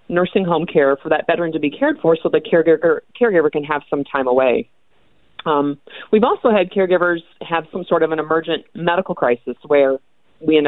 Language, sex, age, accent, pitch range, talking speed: English, female, 30-49, American, 145-180 Hz, 195 wpm